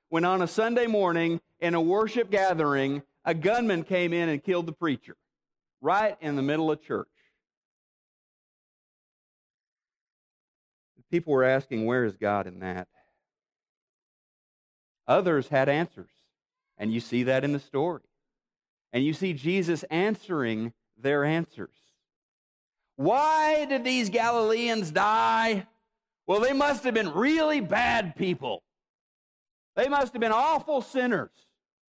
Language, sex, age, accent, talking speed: English, male, 50-69, American, 125 wpm